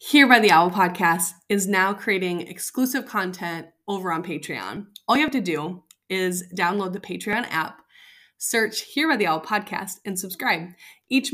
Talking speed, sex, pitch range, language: 170 wpm, female, 195-275 Hz, English